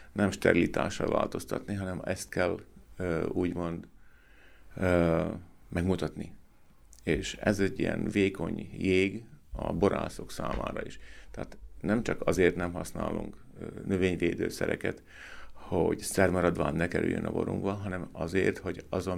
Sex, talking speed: male, 115 wpm